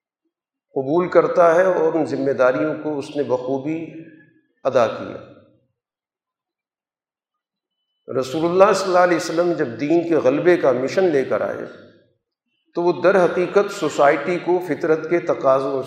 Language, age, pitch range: Urdu, 50-69, 145-180 Hz